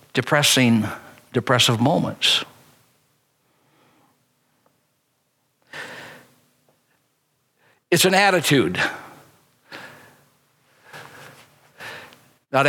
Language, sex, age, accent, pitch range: English, male, 60-79, American, 130-175 Hz